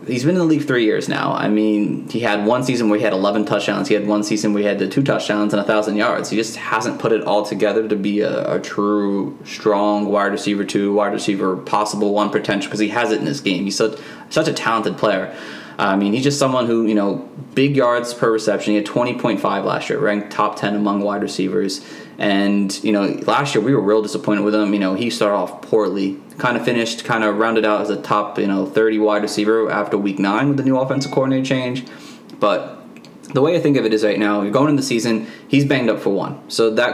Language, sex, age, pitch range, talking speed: English, male, 20-39, 100-115 Hz, 245 wpm